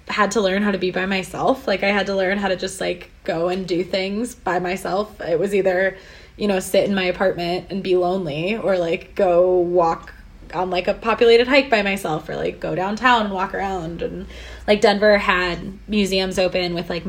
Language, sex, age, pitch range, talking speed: English, female, 20-39, 175-205 Hz, 215 wpm